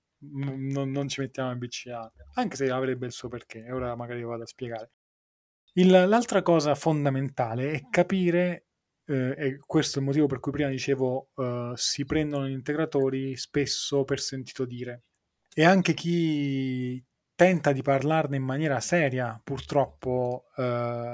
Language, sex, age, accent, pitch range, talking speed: Italian, male, 20-39, native, 125-145 Hz, 155 wpm